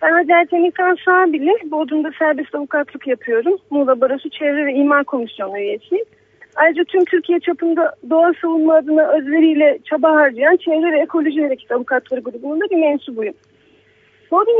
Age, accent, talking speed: 40-59, native, 140 wpm